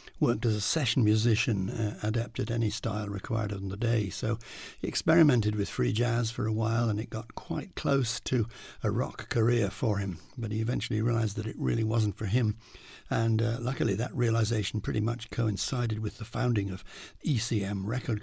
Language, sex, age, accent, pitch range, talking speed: English, male, 60-79, British, 105-120 Hz, 190 wpm